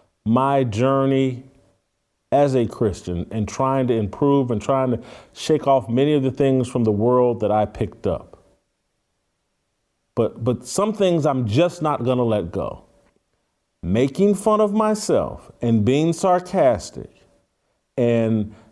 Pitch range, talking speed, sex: 115-180 Hz, 140 wpm, male